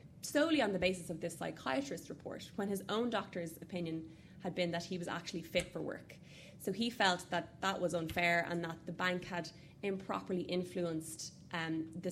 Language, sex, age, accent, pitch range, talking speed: English, female, 20-39, Irish, 165-190 Hz, 190 wpm